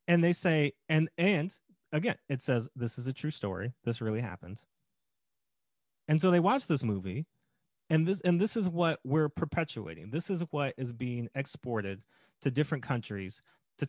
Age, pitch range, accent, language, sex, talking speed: 30-49, 135-190 Hz, American, English, male, 175 wpm